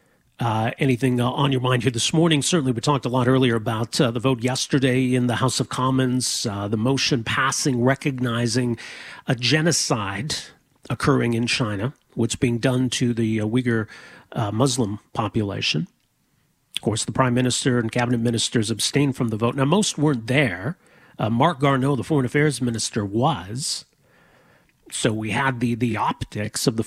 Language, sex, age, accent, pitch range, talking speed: English, male, 40-59, American, 120-145 Hz, 170 wpm